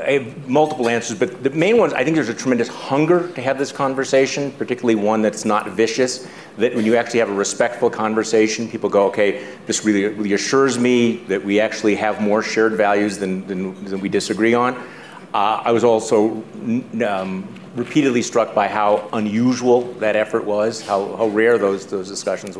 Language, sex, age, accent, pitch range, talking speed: English, male, 40-59, American, 105-140 Hz, 190 wpm